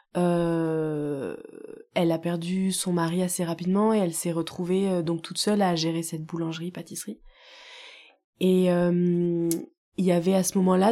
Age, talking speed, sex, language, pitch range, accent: 20-39, 155 wpm, female, French, 170-200 Hz, French